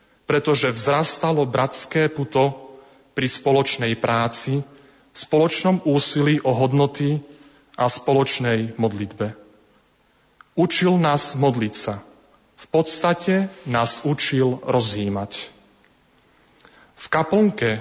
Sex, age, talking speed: male, 30-49, 85 wpm